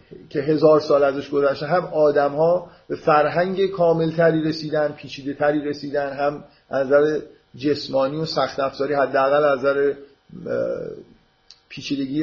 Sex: male